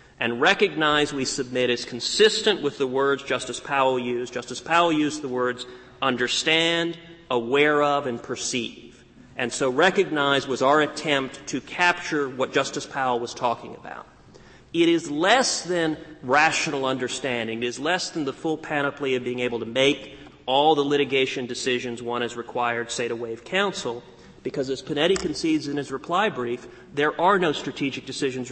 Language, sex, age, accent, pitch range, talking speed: English, male, 40-59, American, 125-150 Hz, 165 wpm